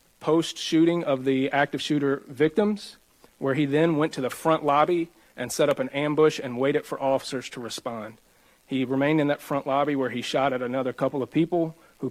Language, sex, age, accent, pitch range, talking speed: English, male, 40-59, American, 130-155 Hz, 205 wpm